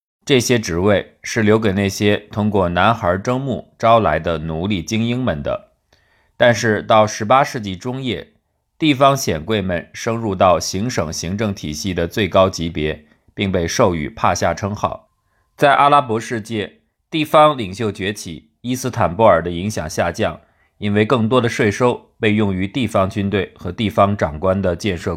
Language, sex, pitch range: Chinese, male, 90-120 Hz